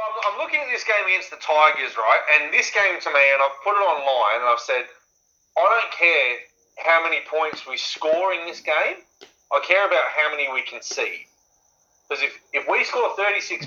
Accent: Australian